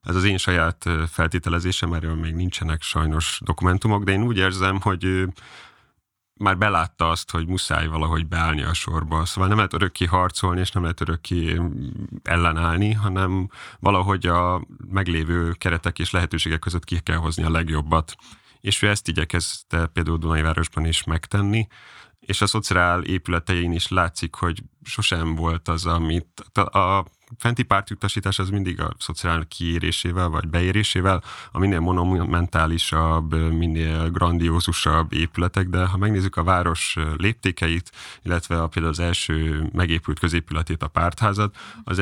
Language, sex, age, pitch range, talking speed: Hungarian, male, 30-49, 80-95 Hz, 140 wpm